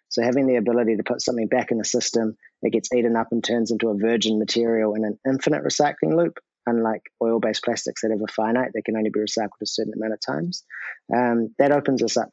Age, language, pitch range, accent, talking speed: 30-49, English, 110-120 Hz, Australian, 235 wpm